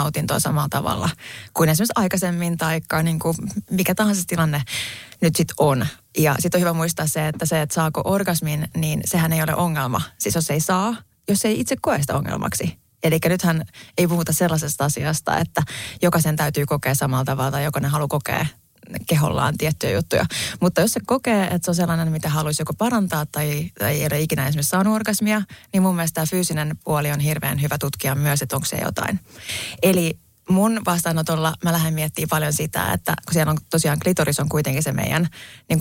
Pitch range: 150-180 Hz